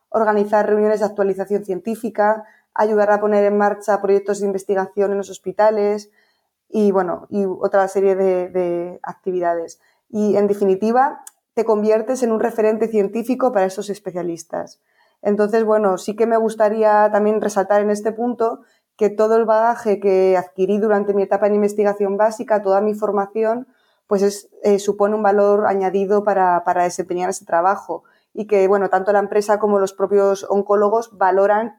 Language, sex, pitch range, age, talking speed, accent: Spanish, female, 195-215 Hz, 20-39, 160 wpm, Spanish